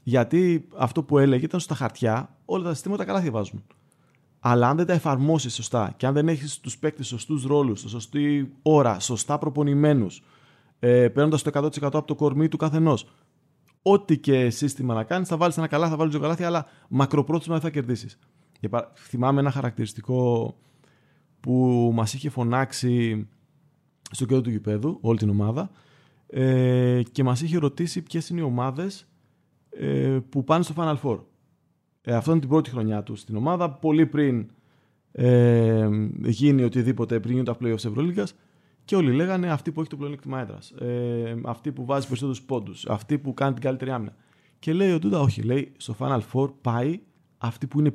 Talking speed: 170 wpm